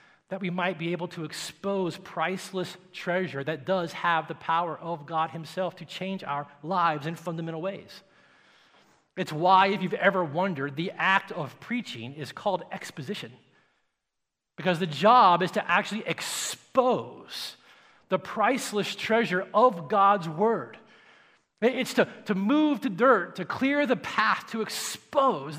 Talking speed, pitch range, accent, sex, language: 145 wpm, 170-225 Hz, American, male, English